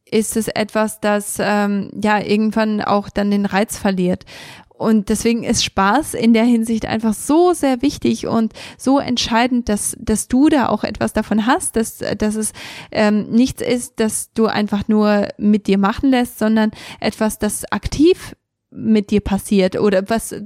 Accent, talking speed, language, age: German, 165 wpm, German, 20-39